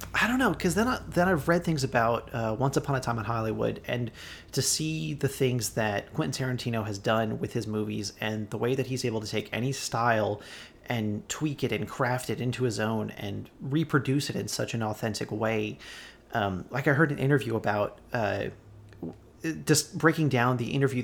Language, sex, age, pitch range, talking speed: English, male, 30-49, 110-135 Hz, 200 wpm